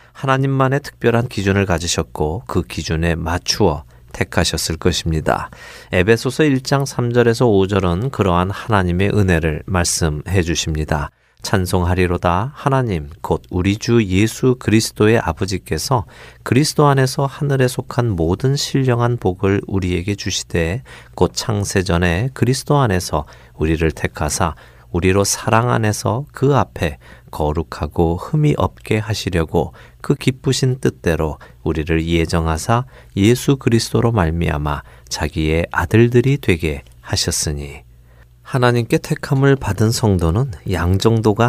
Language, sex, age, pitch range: Korean, male, 40-59, 80-120 Hz